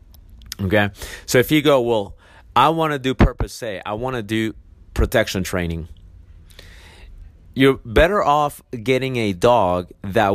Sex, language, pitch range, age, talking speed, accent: male, English, 90-115 Hz, 30-49, 145 wpm, American